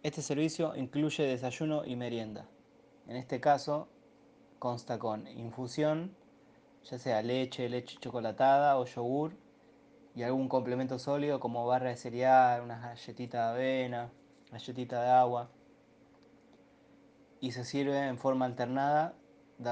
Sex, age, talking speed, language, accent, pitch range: male, 20-39, 125 wpm, Spanish, Argentinian, 120-135 Hz